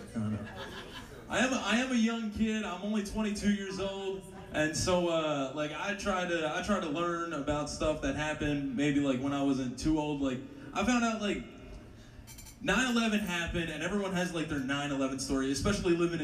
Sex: male